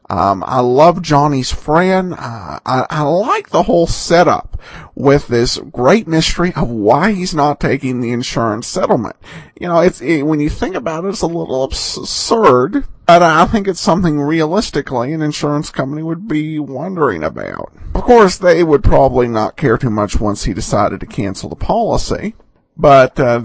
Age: 50-69